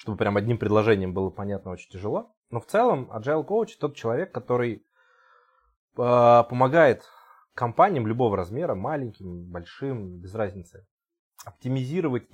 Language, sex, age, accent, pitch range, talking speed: Russian, male, 20-39, native, 95-130 Hz, 125 wpm